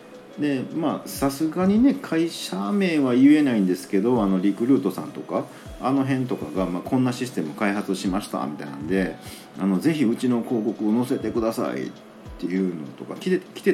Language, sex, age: Japanese, male, 40-59